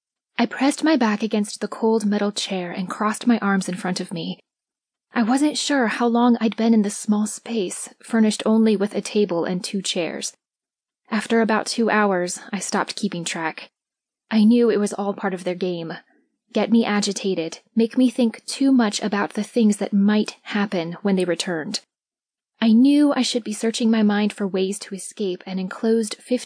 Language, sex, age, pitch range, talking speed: English, female, 20-39, 195-230 Hz, 190 wpm